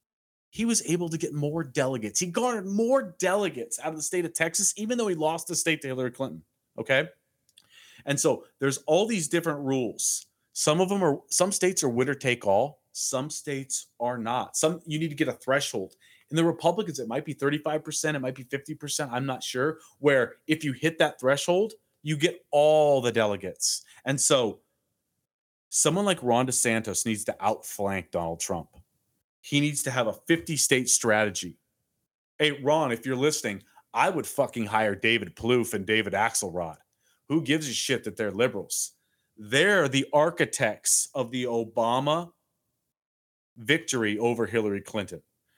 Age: 30-49